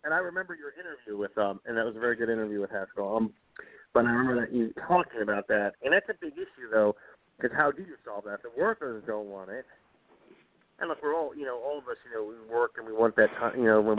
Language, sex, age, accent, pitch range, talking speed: English, male, 40-59, American, 110-145 Hz, 275 wpm